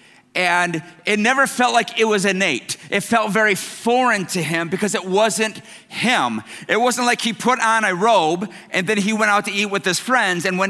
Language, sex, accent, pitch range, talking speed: English, male, American, 190-230 Hz, 215 wpm